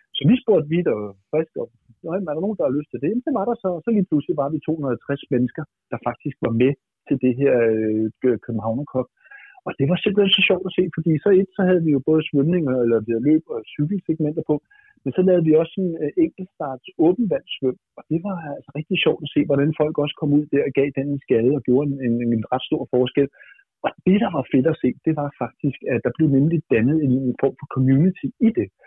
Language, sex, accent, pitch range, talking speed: Danish, male, native, 130-165 Hz, 250 wpm